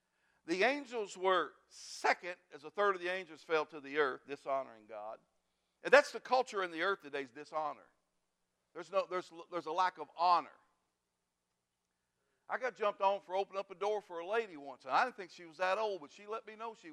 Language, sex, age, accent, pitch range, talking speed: English, male, 60-79, American, 170-225 Hz, 215 wpm